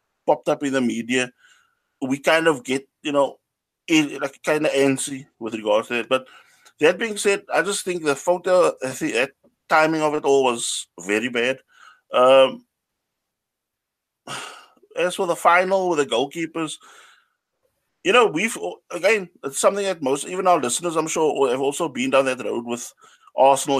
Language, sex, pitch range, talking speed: English, male, 125-155 Hz, 165 wpm